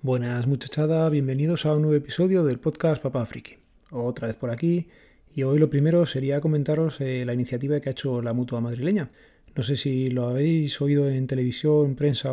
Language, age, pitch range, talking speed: Spanish, 30-49, 125-150 Hz, 185 wpm